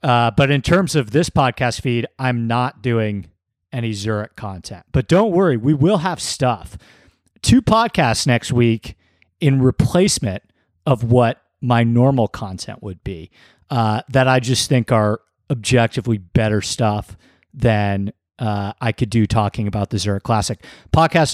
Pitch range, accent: 105-130 Hz, American